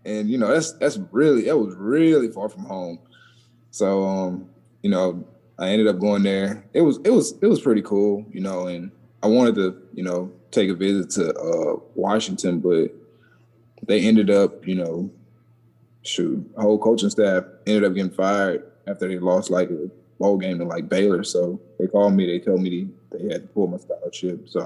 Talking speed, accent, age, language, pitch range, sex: 200 wpm, American, 20-39, English, 90-115 Hz, male